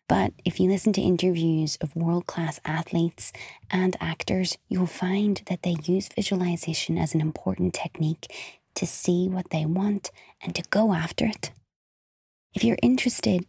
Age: 20-39